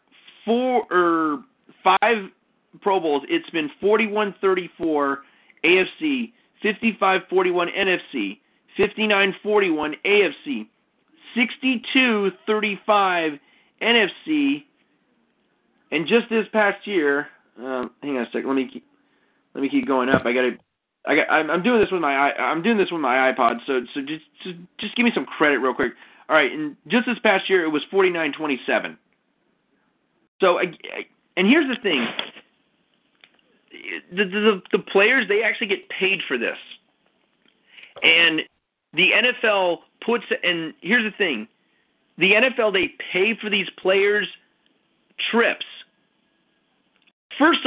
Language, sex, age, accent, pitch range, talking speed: English, male, 40-59, American, 160-235 Hz, 125 wpm